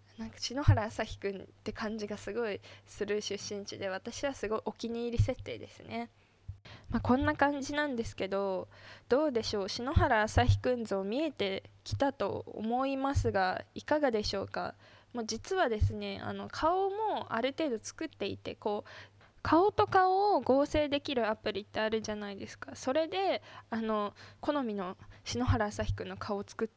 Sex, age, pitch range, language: female, 20-39, 200-255 Hz, Japanese